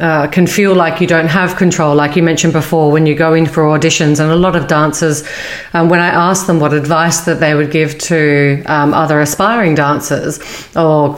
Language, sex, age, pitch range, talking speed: English, female, 40-59, 150-180 Hz, 215 wpm